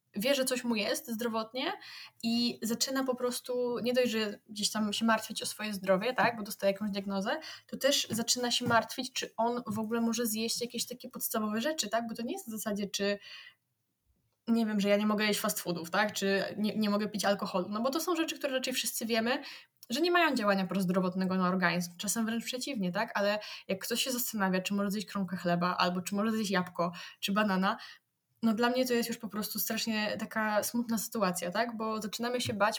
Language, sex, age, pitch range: Polish, female, 10-29, 200-240 Hz